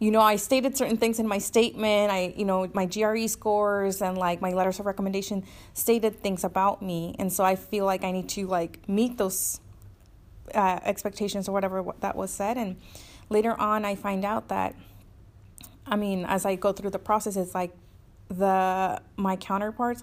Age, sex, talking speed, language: 20-39, female, 190 wpm, English